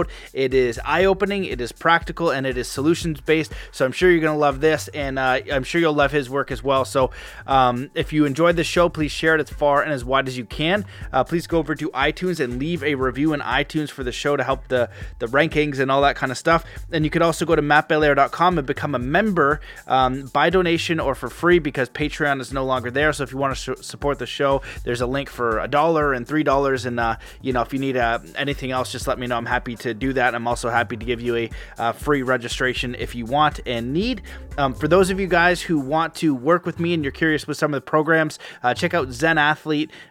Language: English